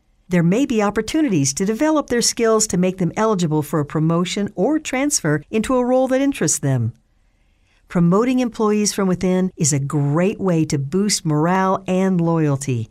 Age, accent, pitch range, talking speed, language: 50-69, American, 155-225 Hz, 165 wpm, English